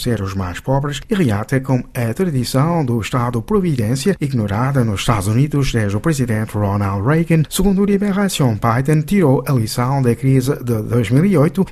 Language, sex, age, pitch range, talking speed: Portuguese, male, 50-69, 120-160 Hz, 160 wpm